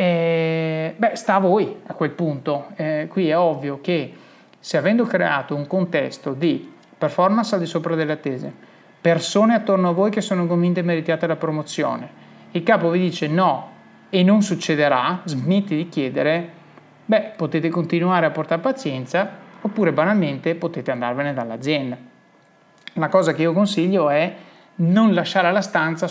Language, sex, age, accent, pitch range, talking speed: Italian, male, 30-49, native, 155-190 Hz, 155 wpm